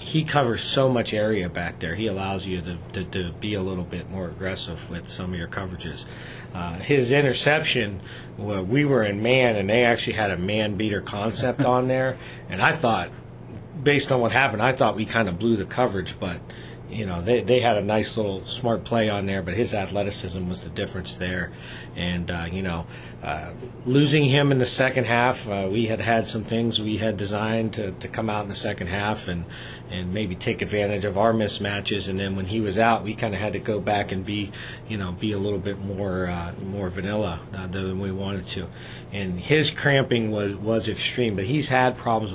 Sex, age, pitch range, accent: male, 50-69, 95-120 Hz, American